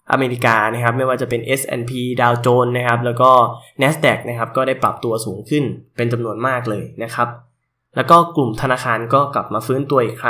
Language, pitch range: Thai, 115-140 Hz